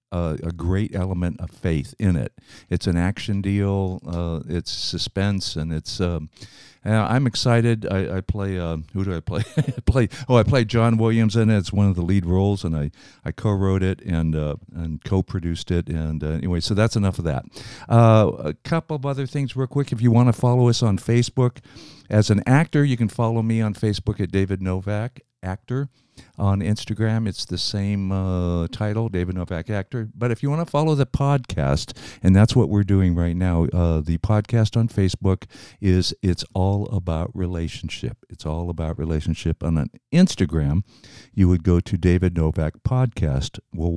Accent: American